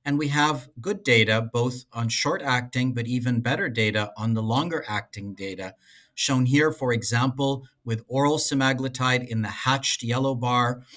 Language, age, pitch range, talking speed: English, 50-69, 115-140 Hz, 155 wpm